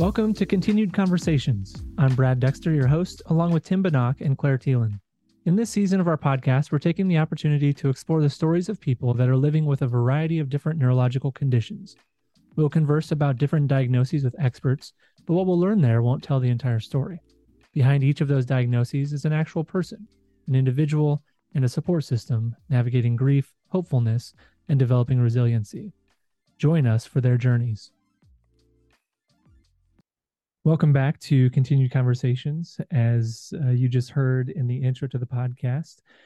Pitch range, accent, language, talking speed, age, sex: 125-160 Hz, American, English, 165 wpm, 30-49, male